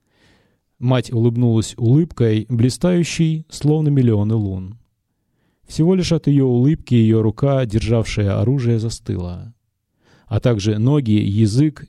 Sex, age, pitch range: male, 30-49, 105-140 Hz